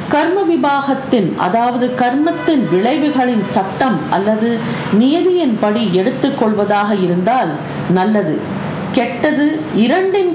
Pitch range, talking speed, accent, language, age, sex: 205-280 Hz, 75 wpm, native, Tamil, 50-69, female